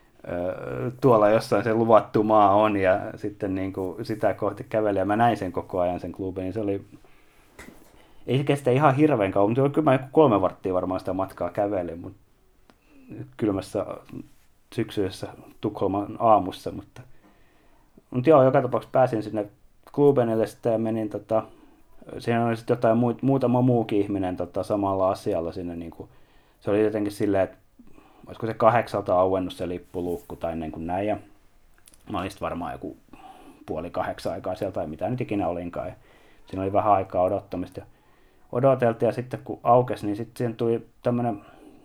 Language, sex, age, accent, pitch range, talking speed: Finnish, male, 30-49, native, 95-120 Hz, 155 wpm